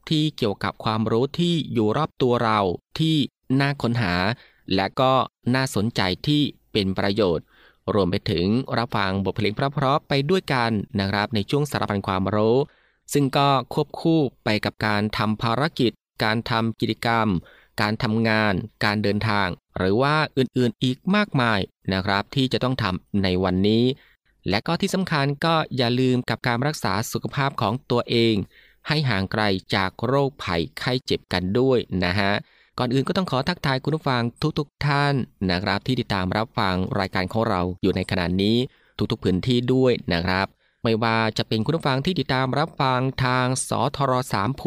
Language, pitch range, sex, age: Thai, 100-130 Hz, male, 20-39